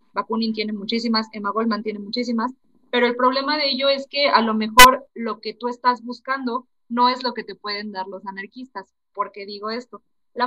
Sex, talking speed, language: female, 205 wpm, Spanish